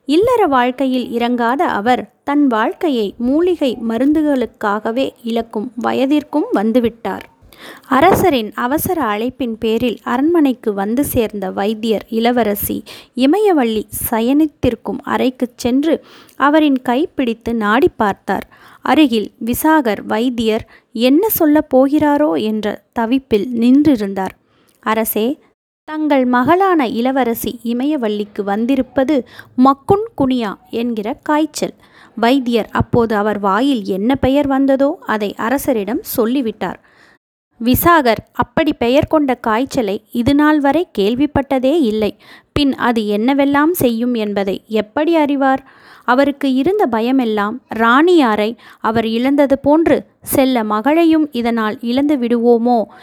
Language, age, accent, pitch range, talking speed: Tamil, 20-39, native, 225-285 Hz, 95 wpm